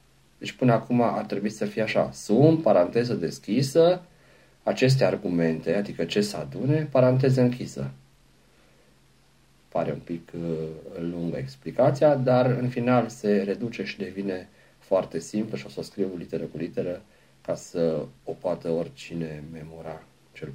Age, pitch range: 40-59, 85-135 Hz